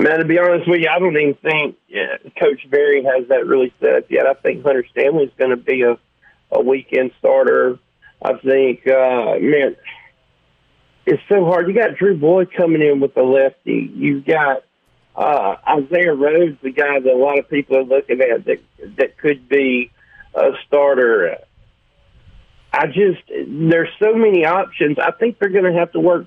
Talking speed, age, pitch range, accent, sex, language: 185 wpm, 50-69, 135-175 Hz, American, male, English